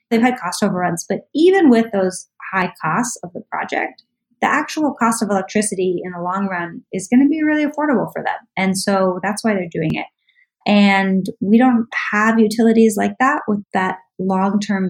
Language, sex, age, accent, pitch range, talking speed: English, female, 20-39, American, 190-245 Hz, 190 wpm